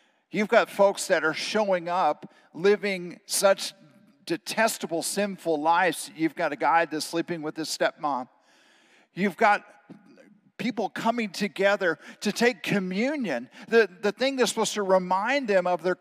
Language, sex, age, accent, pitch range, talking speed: English, male, 50-69, American, 175-225 Hz, 145 wpm